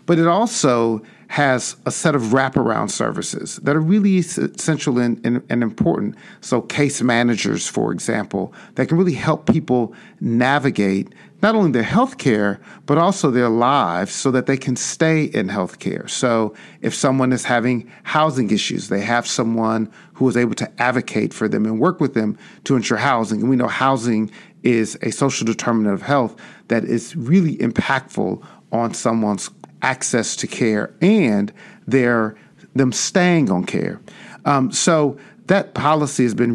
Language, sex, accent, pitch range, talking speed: English, male, American, 115-150 Hz, 165 wpm